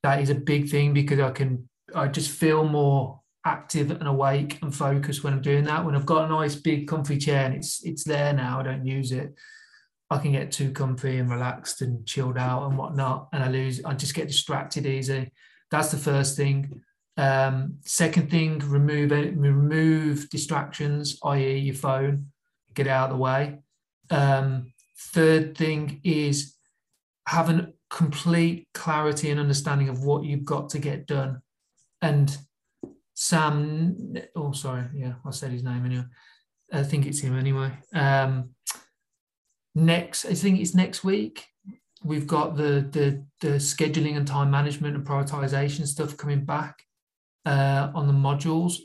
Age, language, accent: 30-49, English, British